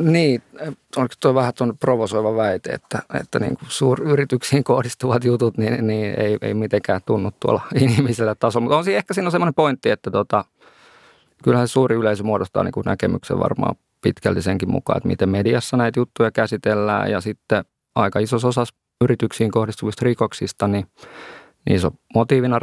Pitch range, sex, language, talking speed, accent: 100-120 Hz, male, Finnish, 160 wpm, native